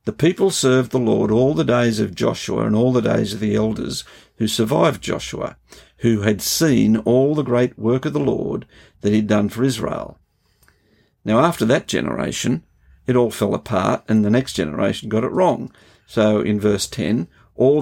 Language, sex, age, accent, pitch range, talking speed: English, male, 50-69, Australian, 105-120 Hz, 185 wpm